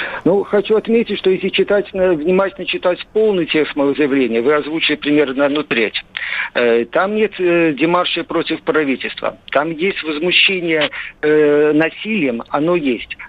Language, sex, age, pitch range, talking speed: Russian, male, 50-69, 150-185 Hz, 130 wpm